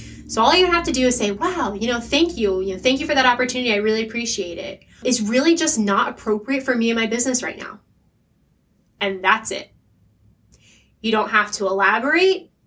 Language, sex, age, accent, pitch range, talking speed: English, female, 20-39, American, 210-255 Hz, 210 wpm